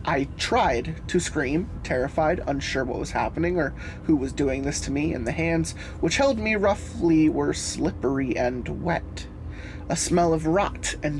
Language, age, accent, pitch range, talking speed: English, 20-39, American, 145-195 Hz, 170 wpm